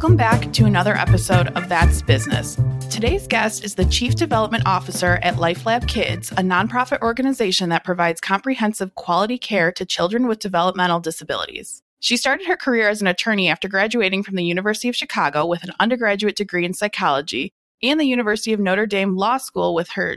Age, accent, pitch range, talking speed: 20-39, American, 180-240 Hz, 180 wpm